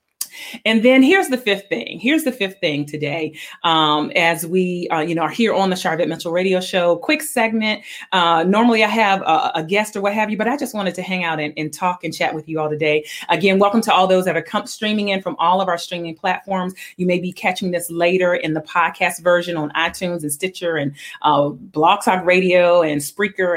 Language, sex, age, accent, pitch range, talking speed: English, female, 30-49, American, 165-215 Hz, 230 wpm